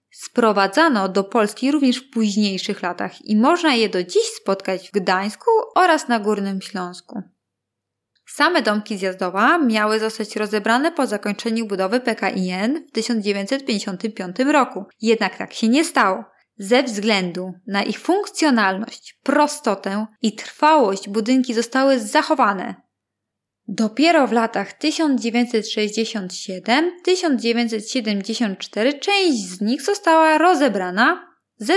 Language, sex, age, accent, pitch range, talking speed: Polish, female, 20-39, native, 200-270 Hz, 110 wpm